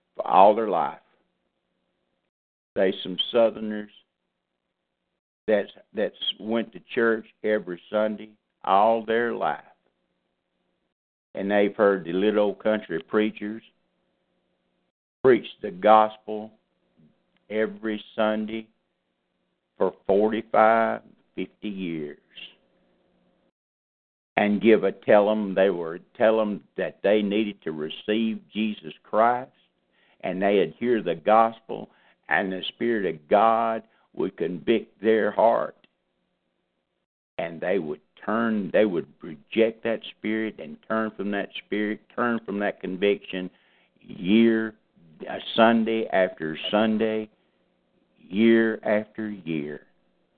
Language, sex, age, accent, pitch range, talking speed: English, male, 60-79, American, 90-110 Hz, 105 wpm